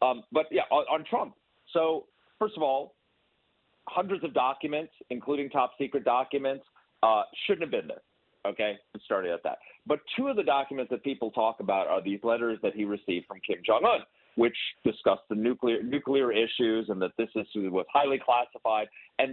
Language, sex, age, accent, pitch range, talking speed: English, male, 40-59, American, 130-220 Hz, 180 wpm